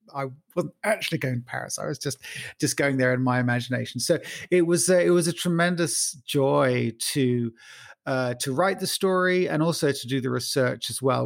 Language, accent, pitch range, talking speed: English, British, 120-160 Hz, 205 wpm